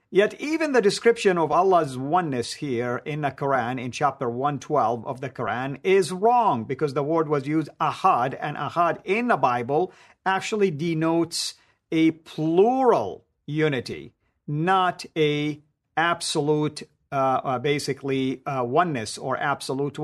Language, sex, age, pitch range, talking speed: English, male, 50-69, 140-190 Hz, 130 wpm